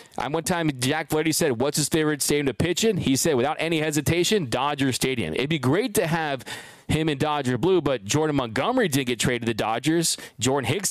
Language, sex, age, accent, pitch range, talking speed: English, male, 20-39, American, 130-170 Hz, 220 wpm